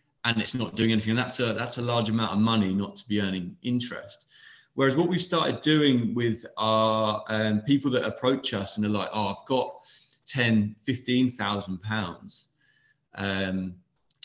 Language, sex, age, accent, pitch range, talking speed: English, male, 30-49, British, 105-130 Hz, 175 wpm